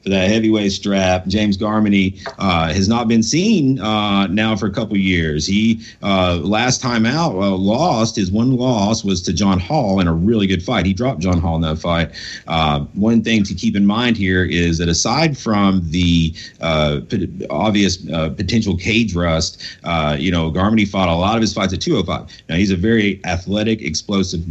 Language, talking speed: English, 200 wpm